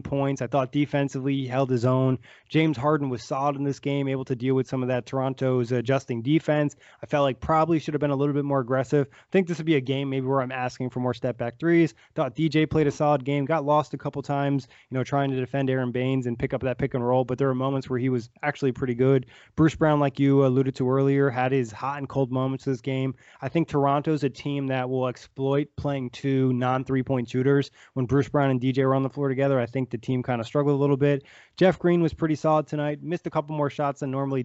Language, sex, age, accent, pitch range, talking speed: English, male, 20-39, American, 130-145 Hz, 265 wpm